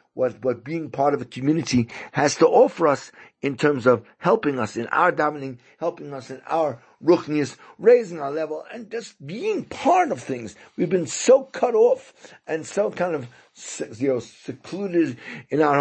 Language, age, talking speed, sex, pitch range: English, 50-69, 180 wpm, male, 135-175 Hz